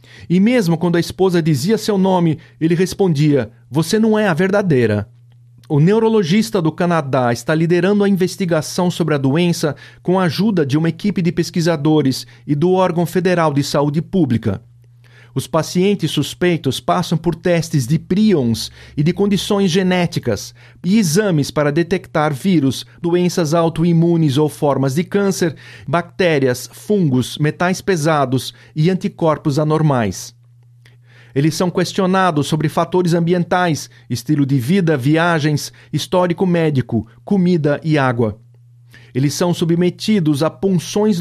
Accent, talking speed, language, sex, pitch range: Brazilian, 135 wpm, English, male, 135-185 Hz